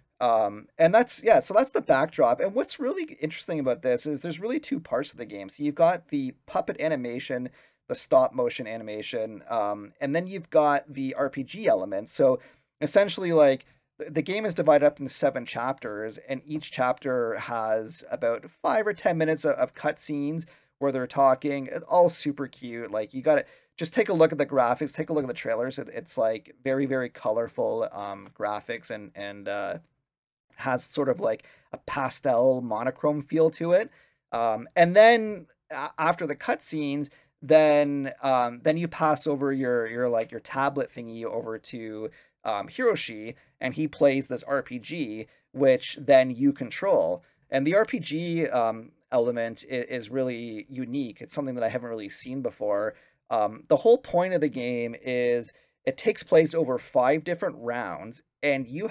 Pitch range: 120-160 Hz